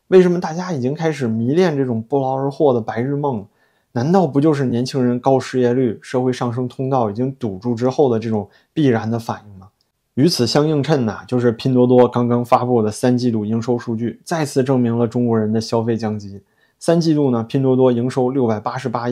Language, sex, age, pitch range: Chinese, male, 20-39, 115-130 Hz